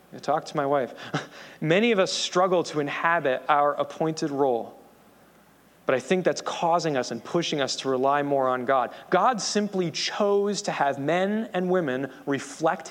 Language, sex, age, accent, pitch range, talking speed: English, male, 30-49, American, 155-195 Hz, 165 wpm